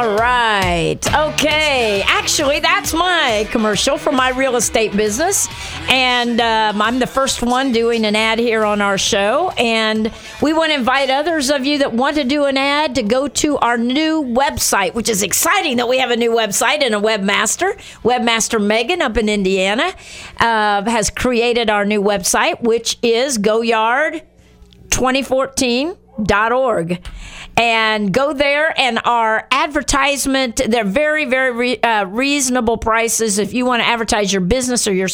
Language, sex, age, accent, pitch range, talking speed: English, female, 50-69, American, 220-265 Hz, 160 wpm